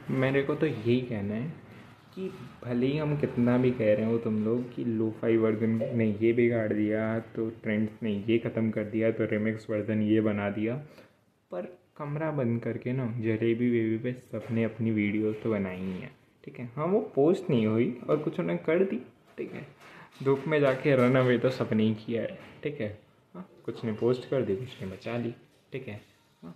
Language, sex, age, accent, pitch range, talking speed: Hindi, male, 20-39, native, 110-135 Hz, 200 wpm